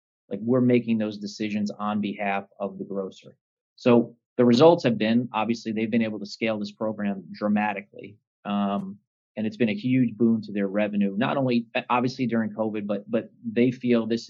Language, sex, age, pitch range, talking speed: English, male, 30-49, 105-125 Hz, 185 wpm